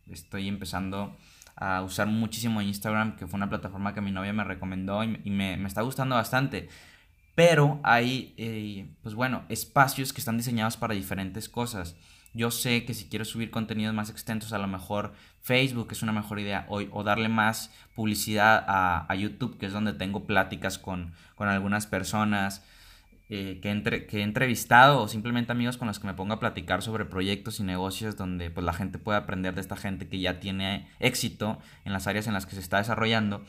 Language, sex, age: Spanish, male, 20-39